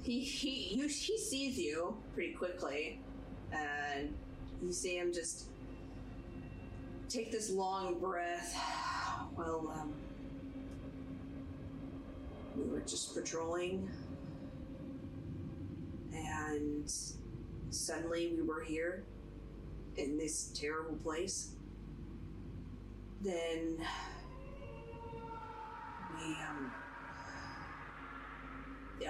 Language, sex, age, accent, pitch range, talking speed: English, female, 30-49, American, 115-180 Hz, 70 wpm